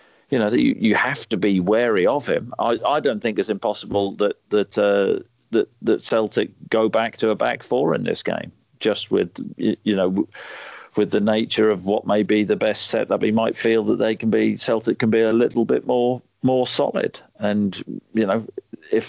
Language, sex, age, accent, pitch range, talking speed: English, male, 40-59, British, 100-115 Hz, 210 wpm